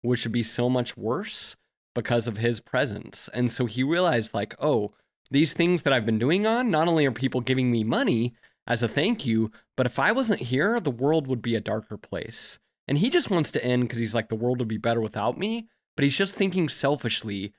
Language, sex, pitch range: English, male, 110-145 Hz